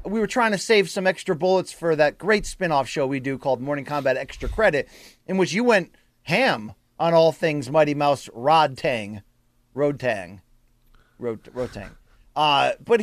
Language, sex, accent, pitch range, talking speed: English, male, American, 170-230 Hz, 175 wpm